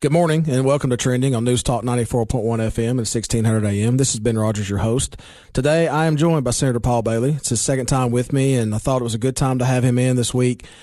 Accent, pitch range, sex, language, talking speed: American, 120-135 Hz, male, English, 260 wpm